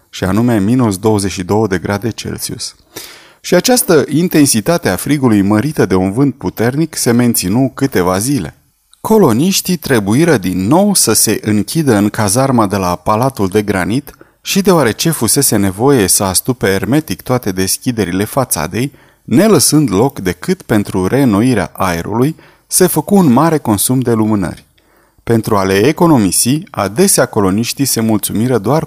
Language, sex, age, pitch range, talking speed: Romanian, male, 30-49, 100-145 Hz, 140 wpm